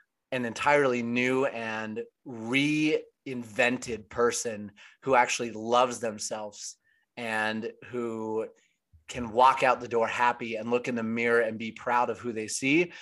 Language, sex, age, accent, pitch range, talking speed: English, male, 30-49, American, 115-135 Hz, 140 wpm